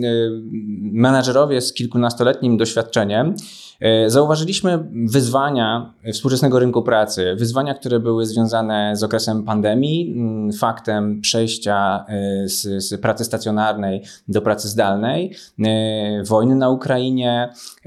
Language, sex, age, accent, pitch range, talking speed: Polish, male, 20-39, native, 105-130 Hz, 90 wpm